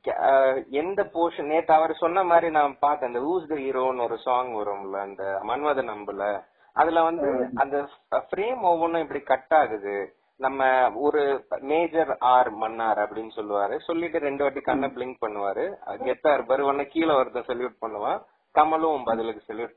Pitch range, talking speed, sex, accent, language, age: 125-165 Hz, 140 wpm, male, native, Tamil, 30-49